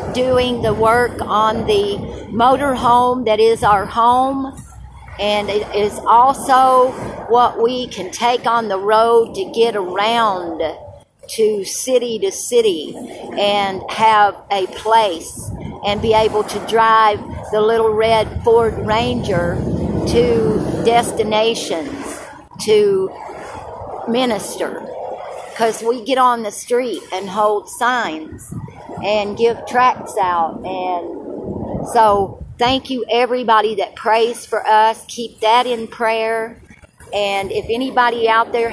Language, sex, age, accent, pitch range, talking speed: English, female, 50-69, American, 205-240 Hz, 120 wpm